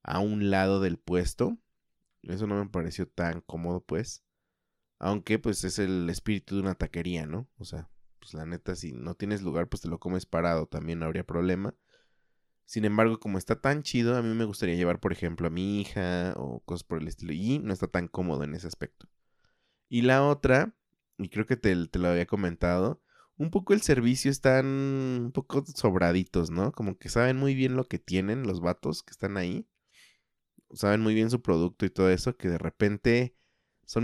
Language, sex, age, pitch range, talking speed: Spanish, male, 20-39, 85-115 Hz, 200 wpm